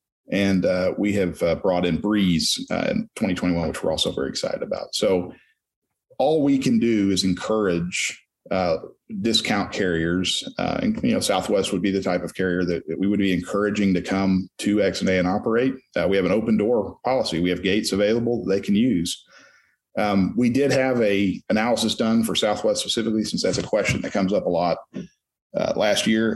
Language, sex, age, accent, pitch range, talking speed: English, male, 40-59, American, 95-110 Hz, 195 wpm